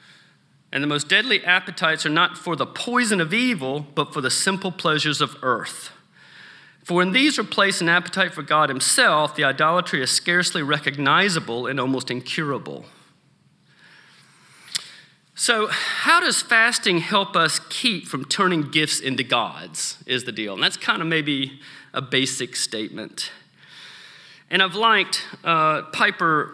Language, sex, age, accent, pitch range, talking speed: English, male, 40-59, American, 140-195 Hz, 145 wpm